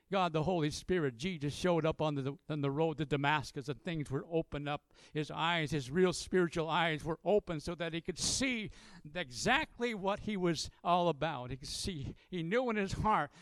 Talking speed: 205 wpm